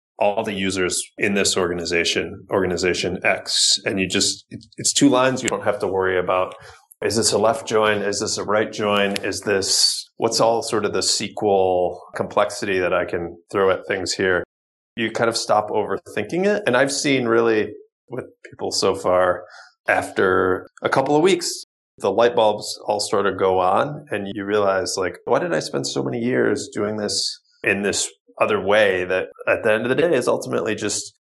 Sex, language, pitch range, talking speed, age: male, English, 95-135 Hz, 190 wpm, 20-39